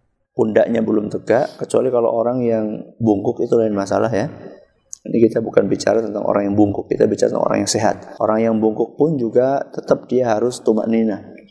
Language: Malay